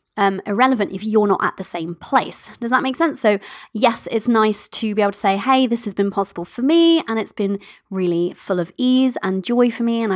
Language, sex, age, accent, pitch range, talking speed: English, female, 20-39, British, 195-250 Hz, 235 wpm